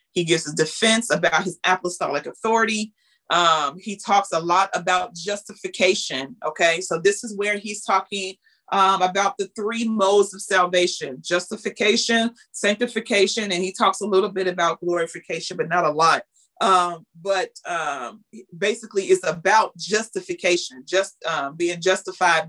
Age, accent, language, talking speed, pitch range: 30-49, American, English, 145 wpm, 175-220 Hz